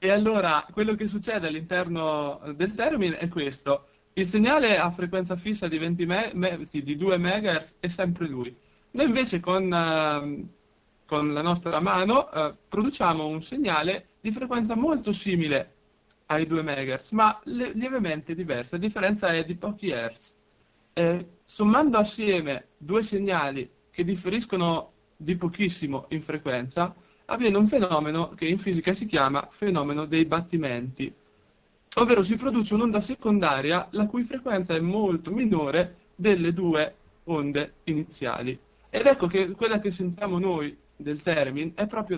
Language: Italian